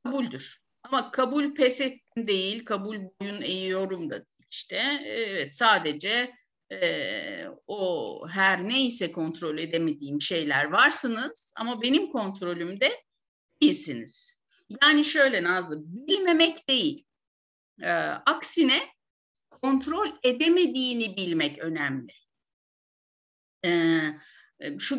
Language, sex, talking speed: Turkish, female, 90 wpm